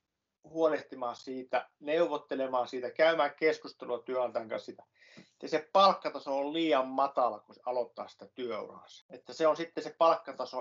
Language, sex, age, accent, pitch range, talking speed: Finnish, male, 50-69, native, 130-160 Hz, 135 wpm